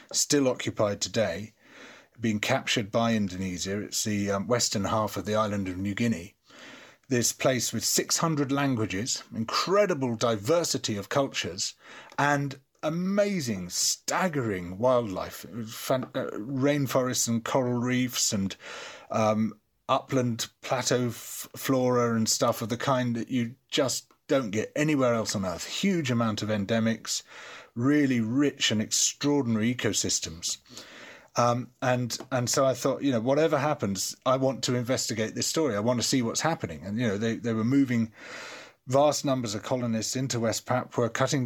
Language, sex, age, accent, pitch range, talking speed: English, male, 30-49, British, 110-130 Hz, 145 wpm